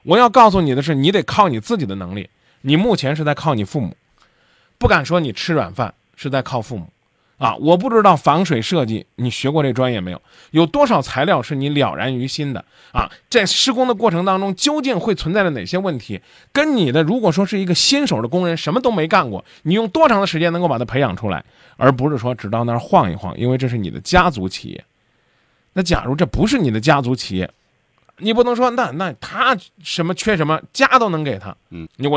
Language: Chinese